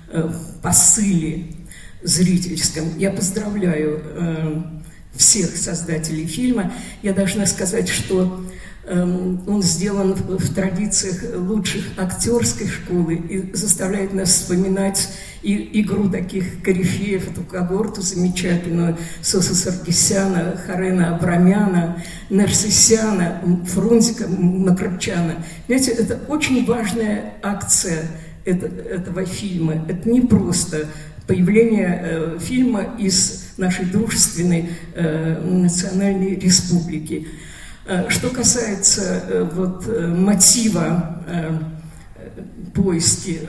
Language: Russian